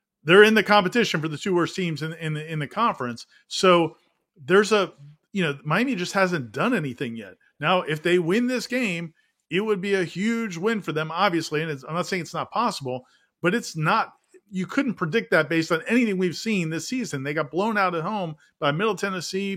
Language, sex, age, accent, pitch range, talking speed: English, male, 40-59, American, 155-195 Hz, 225 wpm